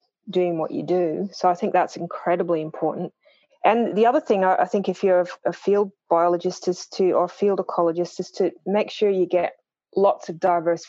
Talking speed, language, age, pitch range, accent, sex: 195 wpm, English, 30-49, 170-195 Hz, Australian, female